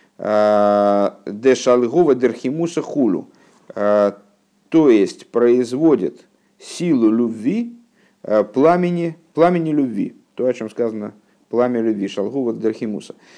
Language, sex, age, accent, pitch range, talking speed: Russian, male, 50-69, native, 105-140 Hz, 85 wpm